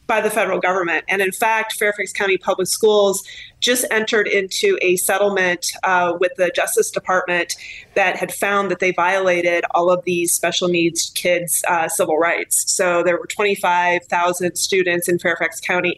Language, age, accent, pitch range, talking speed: English, 30-49, American, 180-205 Hz, 165 wpm